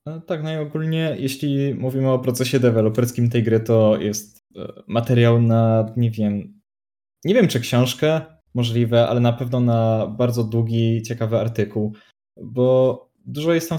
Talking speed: 140 wpm